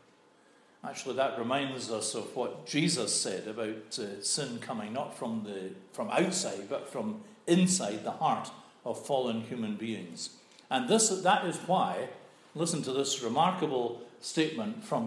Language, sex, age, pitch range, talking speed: English, male, 50-69, 115-165 Hz, 145 wpm